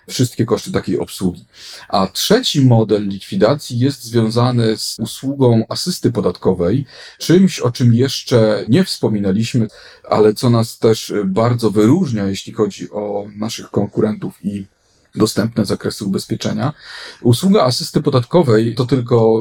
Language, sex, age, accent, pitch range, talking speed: Polish, male, 40-59, native, 110-125 Hz, 125 wpm